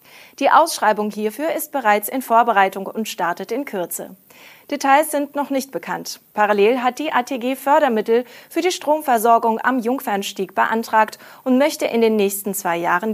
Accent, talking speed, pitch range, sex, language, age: German, 155 wpm, 195-255 Hz, female, German, 30-49